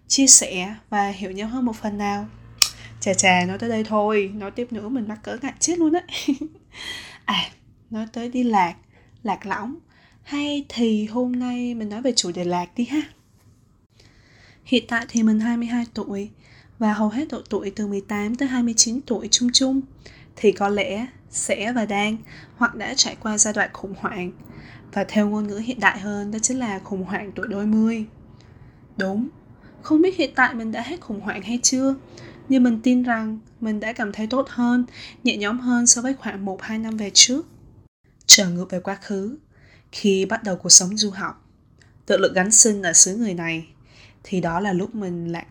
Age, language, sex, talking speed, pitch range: 20-39, Vietnamese, female, 195 wpm, 185-235 Hz